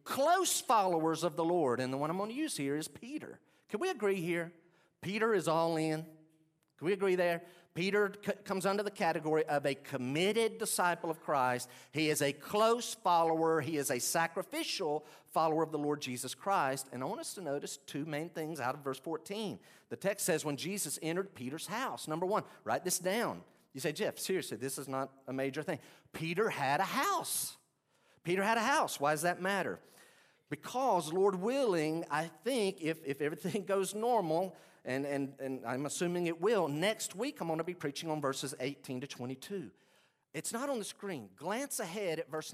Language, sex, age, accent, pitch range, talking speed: English, male, 40-59, American, 140-195 Hz, 195 wpm